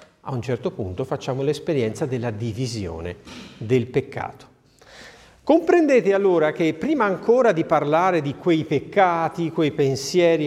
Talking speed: 125 wpm